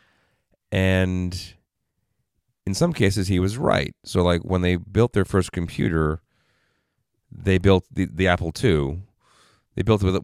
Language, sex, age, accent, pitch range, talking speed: English, male, 30-49, American, 80-100 Hz, 140 wpm